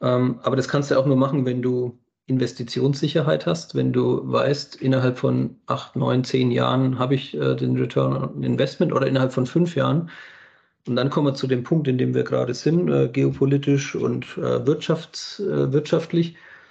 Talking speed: 165 wpm